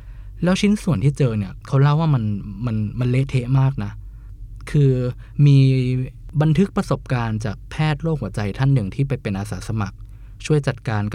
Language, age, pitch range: Thai, 20-39, 105-135 Hz